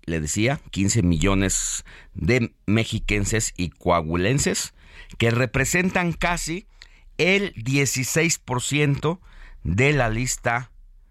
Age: 50-69